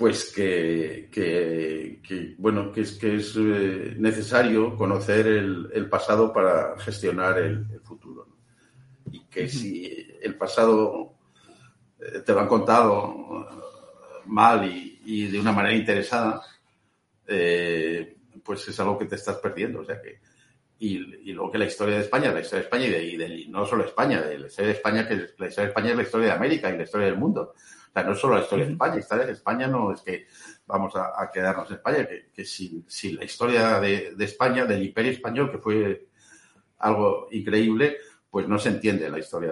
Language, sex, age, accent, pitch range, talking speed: Spanish, male, 50-69, Spanish, 100-120 Hz, 195 wpm